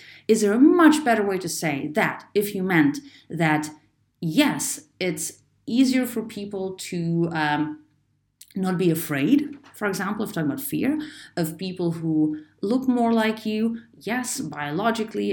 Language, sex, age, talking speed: English, female, 30-49, 150 wpm